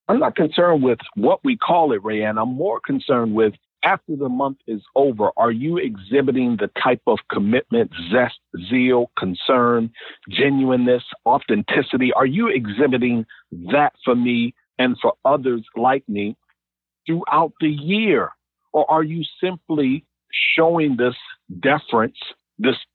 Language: English